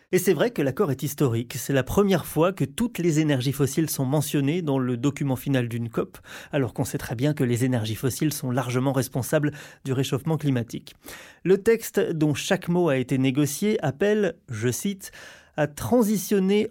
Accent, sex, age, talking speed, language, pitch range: French, male, 30-49, 185 wpm, French, 140-175 Hz